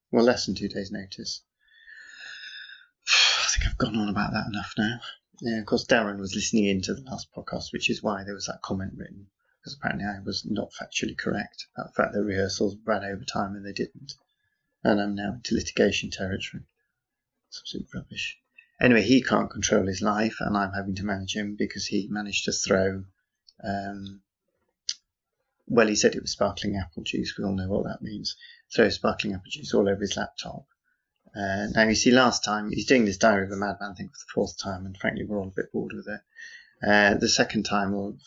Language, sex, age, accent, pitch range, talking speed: English, male, 30-49, British, 100-105 Hz, 210 wpm